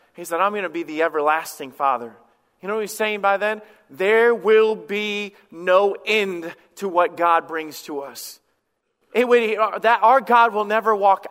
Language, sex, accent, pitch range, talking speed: English, male, American, 175-220 Hz, 185 wpm